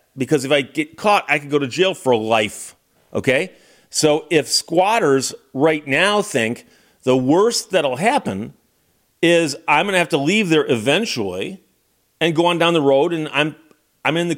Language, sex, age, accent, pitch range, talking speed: English, male, 40-59, American, 135-170 Hz, 180 wpm